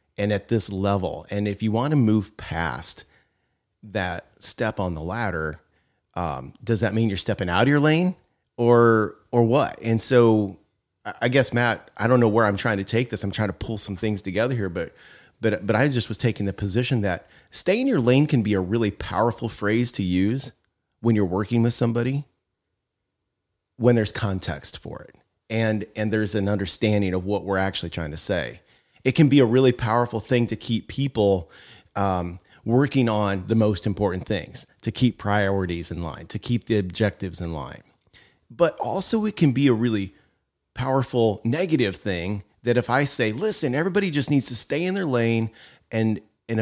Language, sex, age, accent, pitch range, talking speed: English, male, 30-49, American, 95-120 Hz, 190 wpm